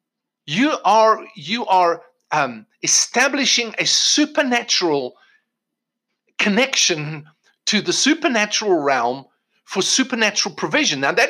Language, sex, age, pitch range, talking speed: English, male, 50-69, 180-255 Hz, 95 wpm